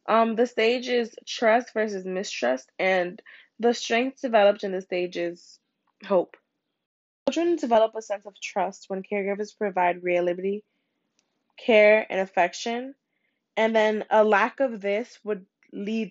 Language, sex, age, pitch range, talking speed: English, female, 10-29, 195-235 Hz, 140 wpm